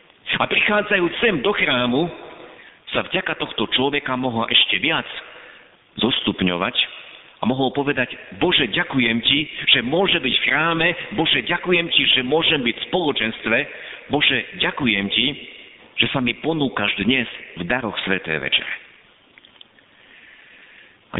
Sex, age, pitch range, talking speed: male, 50-69, 105-160 Hz, 125 wpm